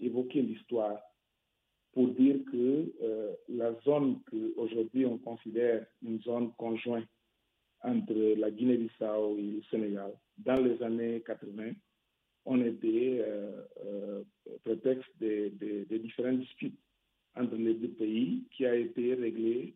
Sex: male